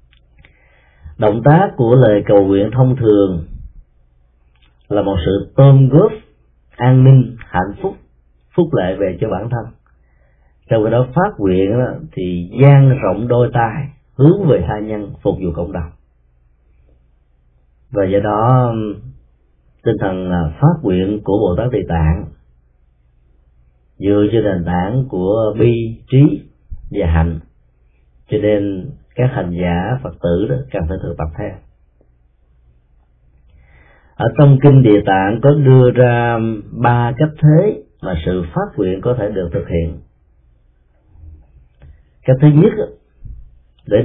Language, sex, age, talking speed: Vietnamese, male, 30-49, 135 wpm